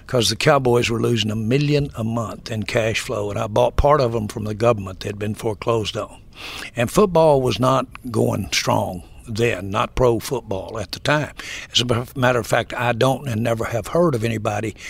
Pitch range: 110-130 Hz